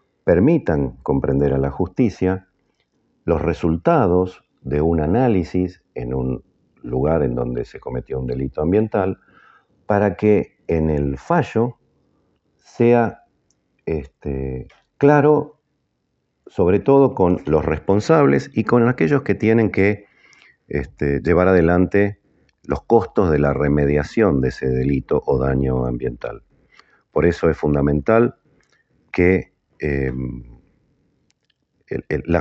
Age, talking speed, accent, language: 50-69, 105 wpm, Argentinian, Spanish